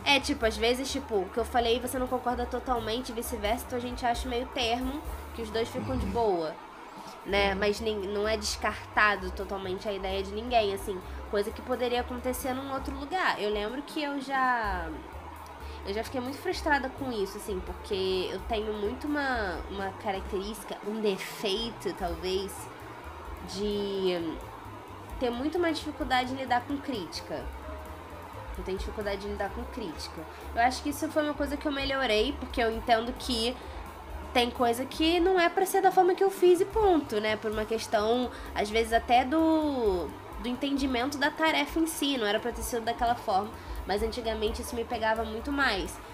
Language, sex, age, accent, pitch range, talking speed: Portuguese, female, 20-39, Brazilian, 210-275 Hz, 180 wpm